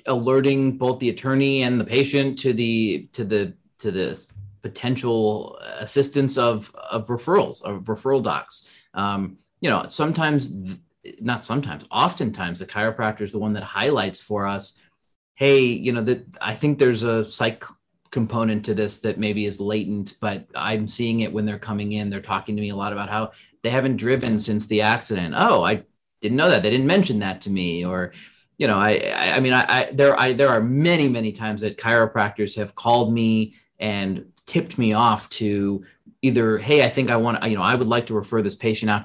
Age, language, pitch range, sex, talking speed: 30-49, English, 105-130 Hz, male, 195 wpm